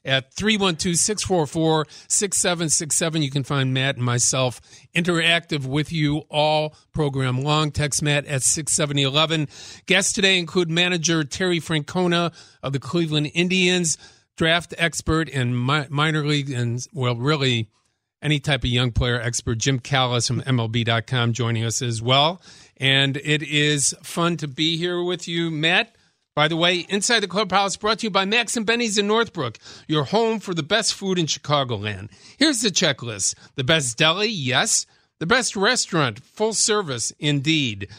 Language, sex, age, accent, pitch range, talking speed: English, male, 50-69, American, 135-175 Hz, 150 wpm